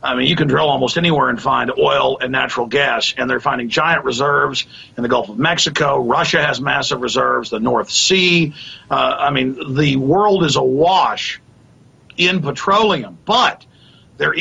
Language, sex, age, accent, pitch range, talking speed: English, male, 50-69, American, 130-170 Hz, 170 wpm